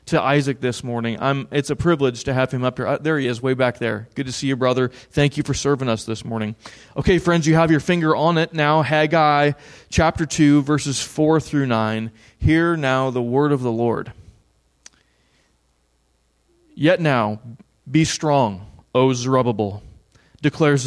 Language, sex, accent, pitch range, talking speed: English, male, American, 115-150 Hz, 175 wpm